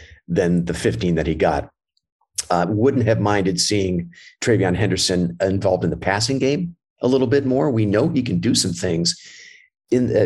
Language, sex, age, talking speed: English, male, 50-69, 180 wpm